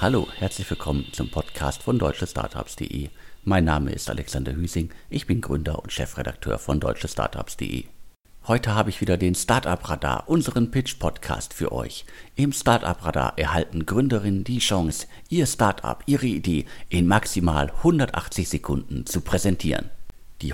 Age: 50-69